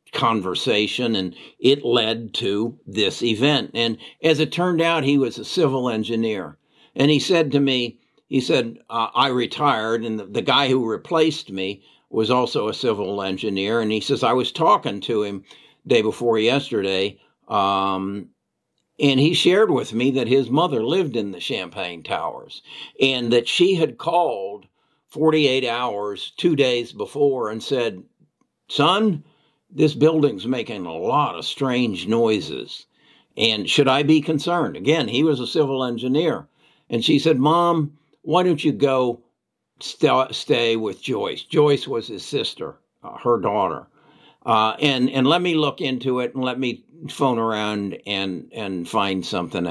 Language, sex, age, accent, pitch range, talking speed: English, male, 60-79, American, 110-150 Hz, 160 wpm